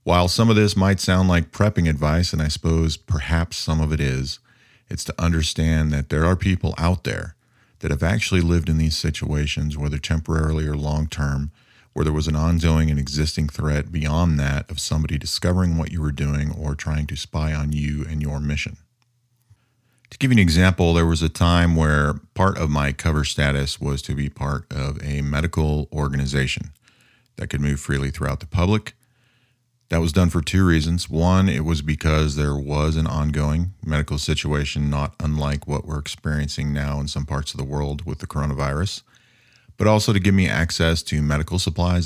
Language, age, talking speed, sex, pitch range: English, 40-59, 190 wpm, male, 75-95 Hz